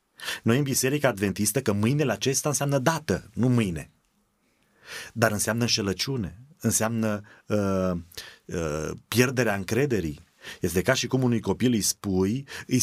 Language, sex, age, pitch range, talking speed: Romanian, male, 30-49, 100-125 Hz, 130 wpm